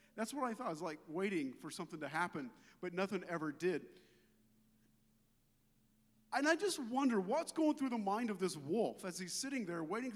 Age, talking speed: 40-59, 195 wpm